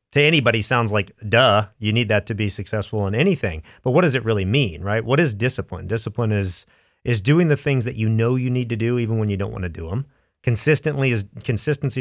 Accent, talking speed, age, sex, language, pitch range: American, 235 wpm, 40-59, male, English, 105-135 Hz